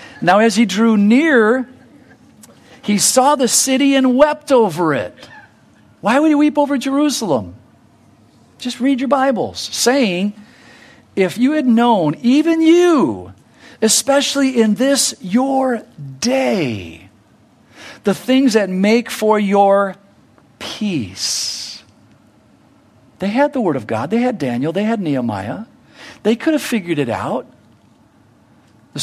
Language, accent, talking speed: English, American, 125 wpm